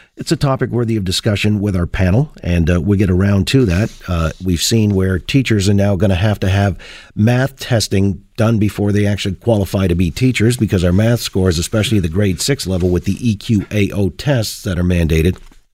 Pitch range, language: 100-135 Hz, English